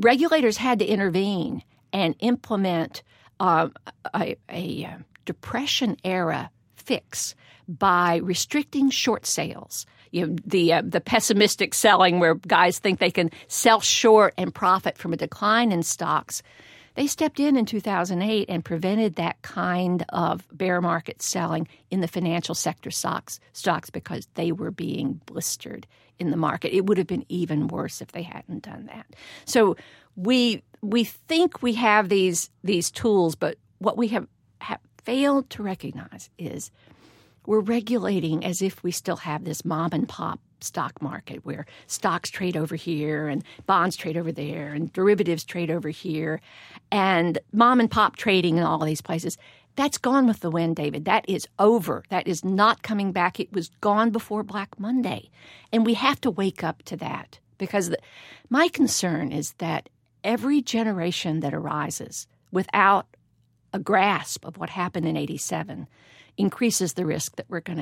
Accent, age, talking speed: American, 50-69, 160 wpm